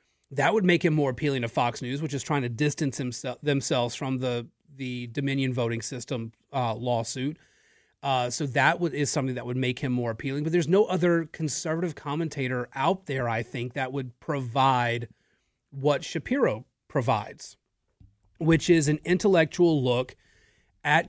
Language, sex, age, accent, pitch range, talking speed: English, male, 30-49, American, 125-160 Hz, 165 wpm